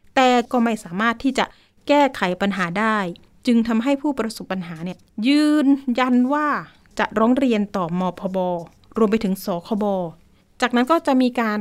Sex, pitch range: female, 210-270 Hz